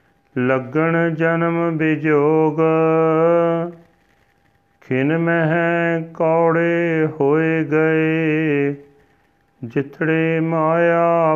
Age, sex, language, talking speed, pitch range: 40-59, male, Punjabi, 55 wpm, 155-170 Hz